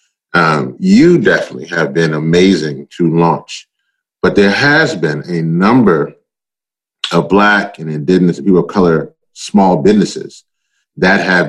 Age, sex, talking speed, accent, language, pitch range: 30-49, male, 130 wpm, American, English, 85-100 Hz